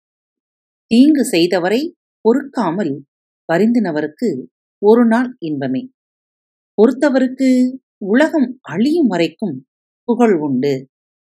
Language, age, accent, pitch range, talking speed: Tamil, 40-59, native, 180-275 Hz, 70 wpm